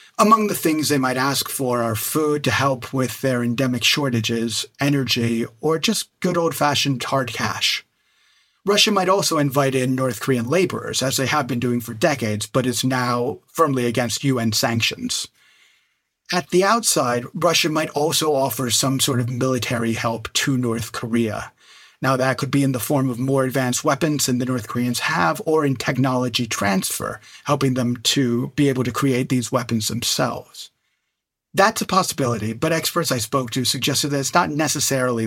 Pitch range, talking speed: 120-145 Hz, 175 wpm